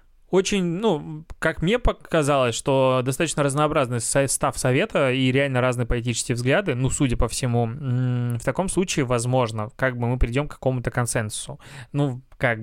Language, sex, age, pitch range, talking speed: Russian, male, 20-39, 120-145 Hz, 150 wpm